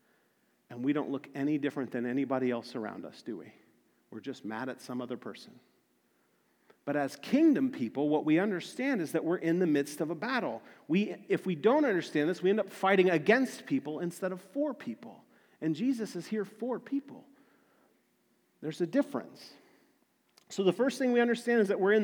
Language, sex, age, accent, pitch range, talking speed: English, male, 40-59, American, 165-235 Hz, 195 wpm